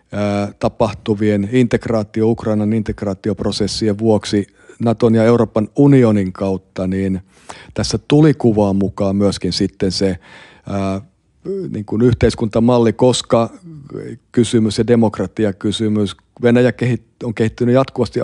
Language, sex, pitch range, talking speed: Finnish, male, 100-120 Hz, 90 wpm